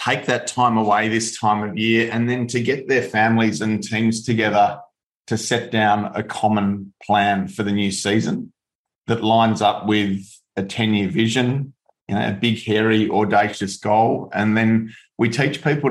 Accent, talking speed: Australian, 165 wpm